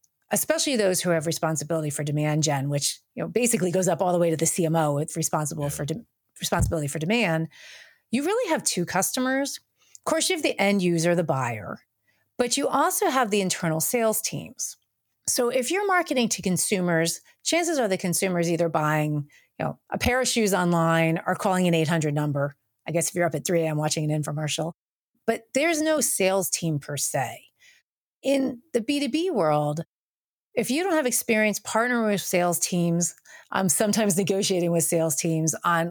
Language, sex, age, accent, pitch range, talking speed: English, female, 30-49, American, 160-225 Hz, 185 wpm